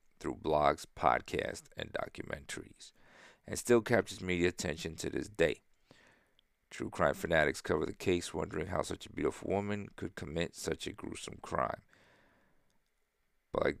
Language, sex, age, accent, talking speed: English, male, 50-69, American, 145 wpm